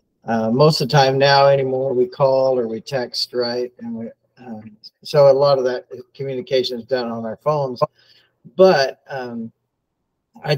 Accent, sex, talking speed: American, male, 170 wpm